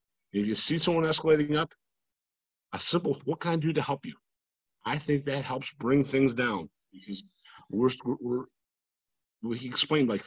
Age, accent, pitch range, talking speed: 40-59, American, 115-155 Hz, 170 wpm